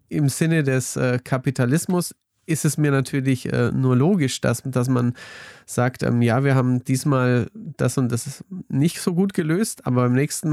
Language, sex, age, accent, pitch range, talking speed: German, male, 40-59, German, 125-145 Hz, 175 wpm